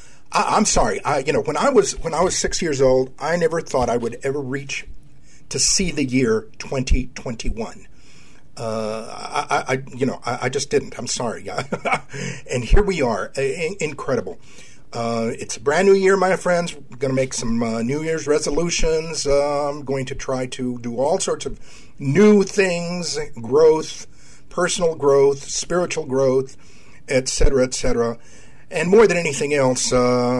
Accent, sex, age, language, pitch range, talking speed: American, male, 50-69, English, 125-180 Hz, 175 wpm